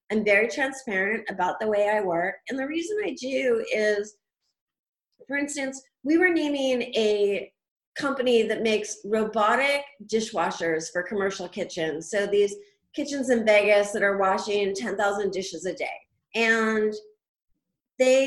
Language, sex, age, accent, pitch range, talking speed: Dutch, female, 30-49, American, 195-240 Hz, 140 wpm